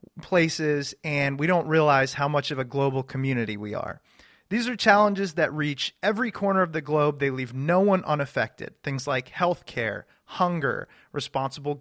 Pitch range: 145-195 Hz